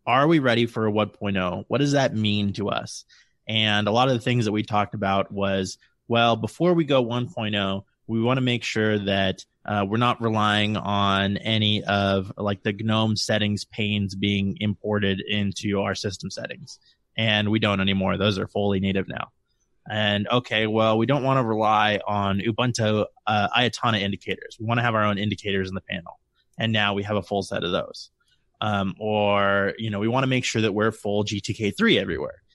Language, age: English, 20-39